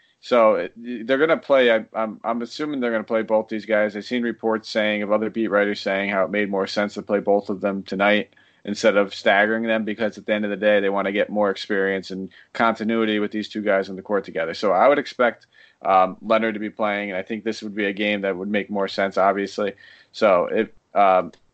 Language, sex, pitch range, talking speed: English, male, 100-115 Hz, 240 wpm